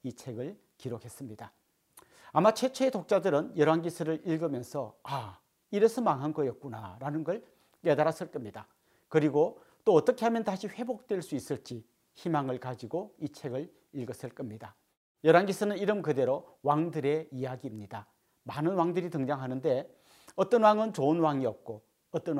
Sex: male